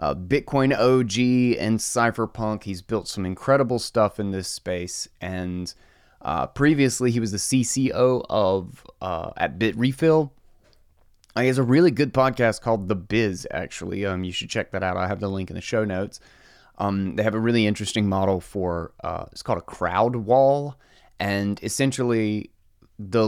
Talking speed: 170 wpm